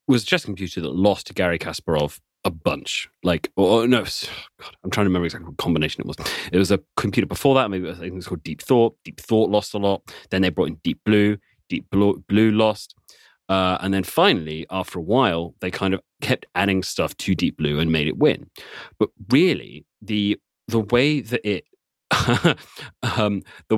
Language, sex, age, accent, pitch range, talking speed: English, male, 30-49, British, 90-110 Hz, 200 wpm